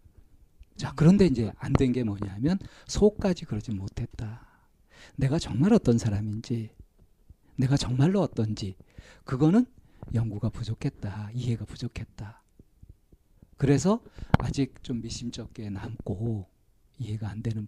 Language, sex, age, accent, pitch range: Korean, male, 40-59, native, 105-145 Hz